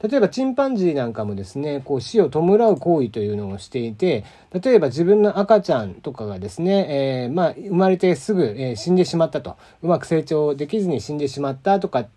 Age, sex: 40-59, male